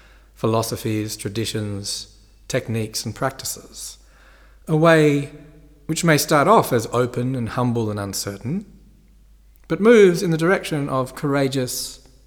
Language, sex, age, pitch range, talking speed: English, male, 40-59, 100-145 Hz, 115 wpm